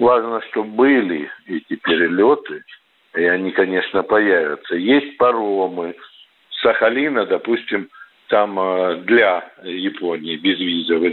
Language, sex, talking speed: Russian, male, 90 wpm